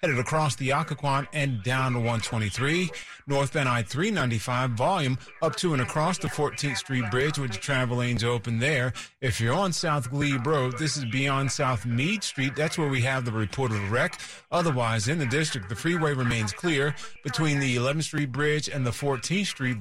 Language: English